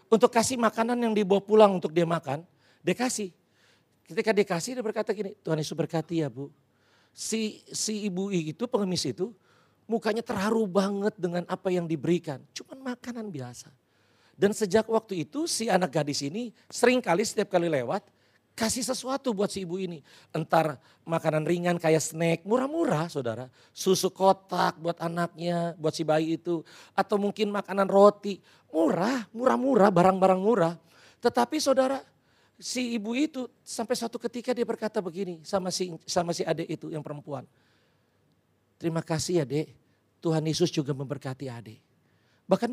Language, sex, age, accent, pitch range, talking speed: Indonesian, male, 40-59, native, 160-215 Hz, 155 wpm